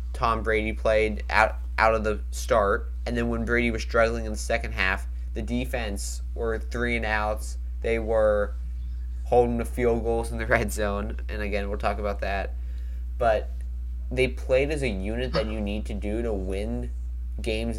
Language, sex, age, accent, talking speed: English, male, 20-39, American, 180 wpm